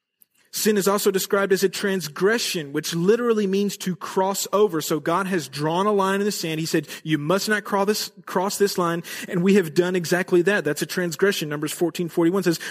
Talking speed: 205 wpm